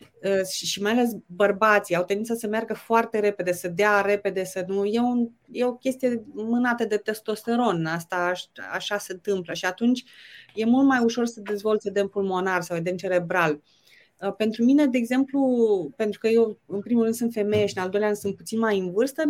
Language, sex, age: Romanian, female, 30-49